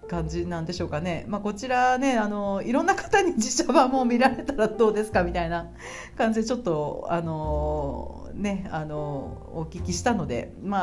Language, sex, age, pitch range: Japanese, female, 40-59, 195-260 Hz